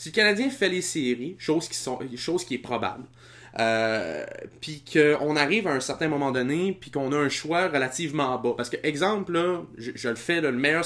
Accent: Canadian